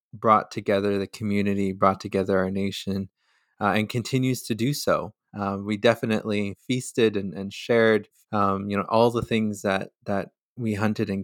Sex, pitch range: male, 100-115 Hz